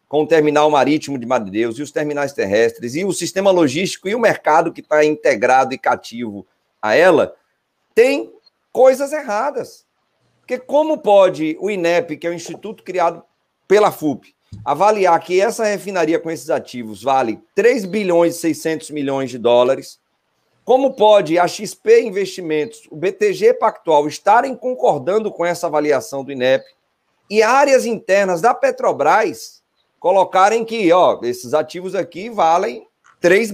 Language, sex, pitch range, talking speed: Portuguese, male, 160-250 Hz, 150 wpm